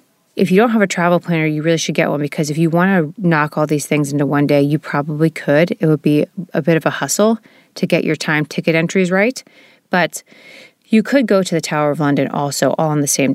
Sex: female